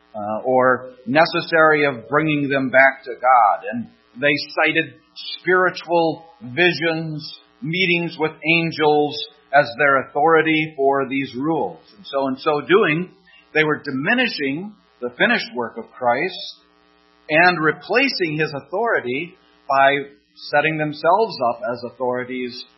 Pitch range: 120-150 Hz